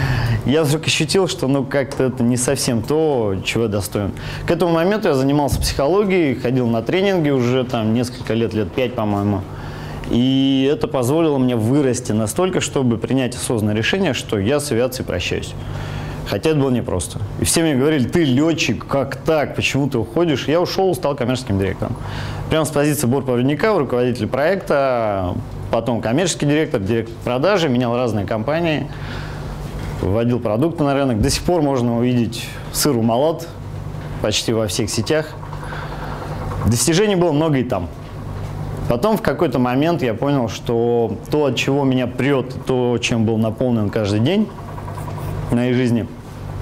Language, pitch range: Russian, 115-140 Hz